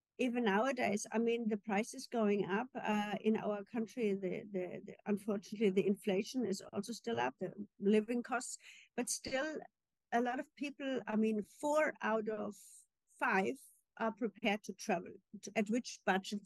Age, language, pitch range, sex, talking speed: 50-69, English, 205-235 Hz, female, 170 wpm